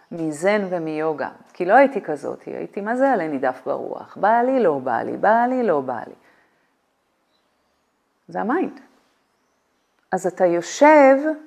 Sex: female